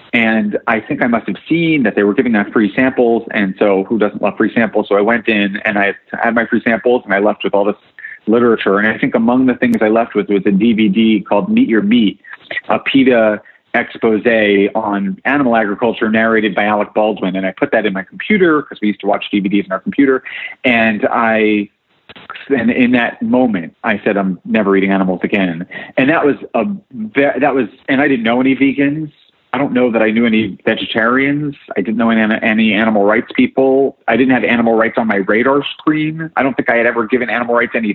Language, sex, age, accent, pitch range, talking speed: English, male, 30-49, American, 105-130 Hz, 220 wpm